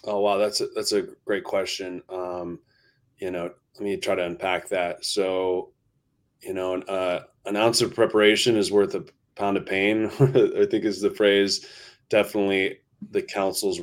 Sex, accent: male, American